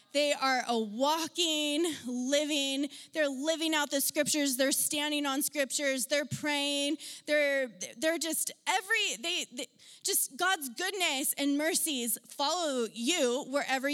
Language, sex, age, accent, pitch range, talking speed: English, female, 20-39, American, 275-335 Hz, 130 wpm